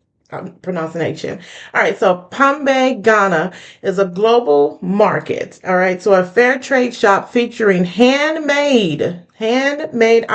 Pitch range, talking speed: 185-245 Hz, 115 wpm